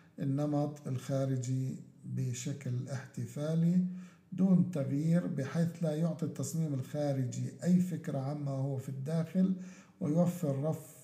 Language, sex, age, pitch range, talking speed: Arabic, male, 50-69, 135-165 Hz, 105 wpm